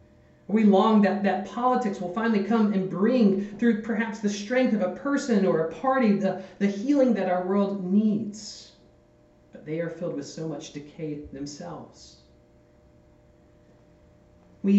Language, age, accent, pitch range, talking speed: English, 40-59, American, 130-200 Hz, 150 wpm